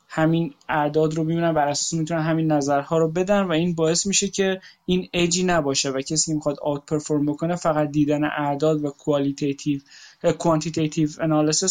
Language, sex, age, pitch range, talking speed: Persian, male, 20-39, 150-175 Hz, 155 wpm